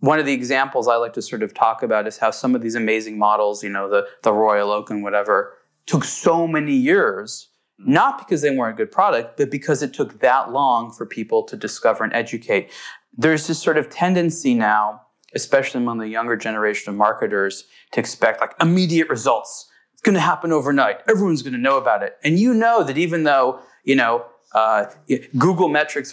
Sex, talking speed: male, 205 wpm